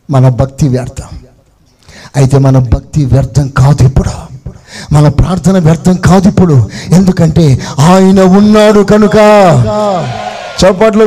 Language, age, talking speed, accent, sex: Telugu, 50-69, 105 wpm, native, male